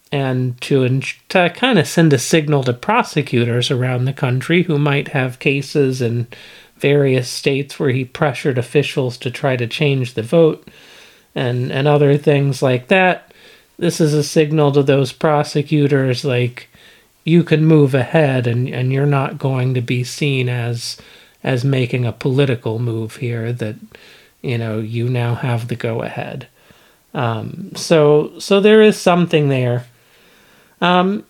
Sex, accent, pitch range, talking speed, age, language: male, American, 125-160 Hz, 155 wpm, 40-59, English